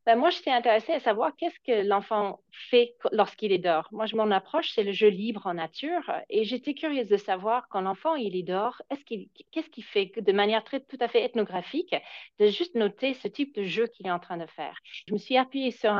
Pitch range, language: 190-250 Hz, French